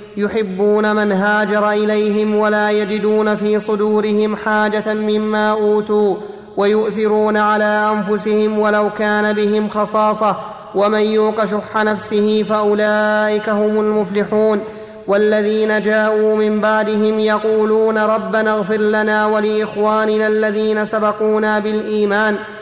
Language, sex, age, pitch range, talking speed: Arabic, male, 20-39, 210-220 Hz, 100 wpm